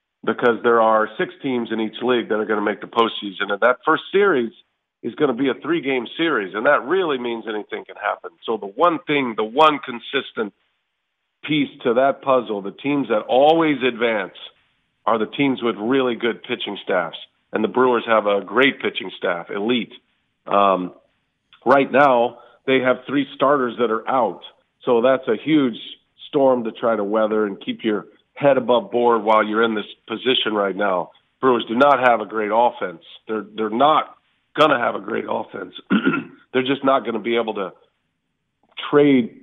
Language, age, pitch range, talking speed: English, 50-69, 110-135 Hz, 185 wpm